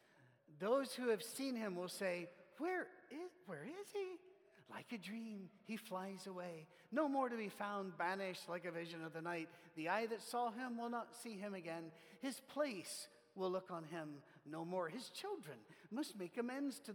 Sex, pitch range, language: male, 185-250 Hz, English